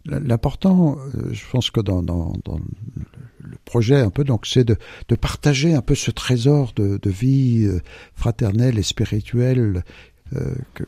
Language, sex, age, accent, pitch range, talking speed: French, male, 60-79, French, 95-125 Hz, 155 wpm